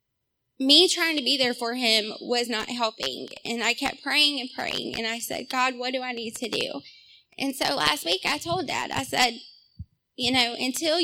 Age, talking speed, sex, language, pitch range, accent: 20-39, 205 wpm, female, English, 230-275 Hz, American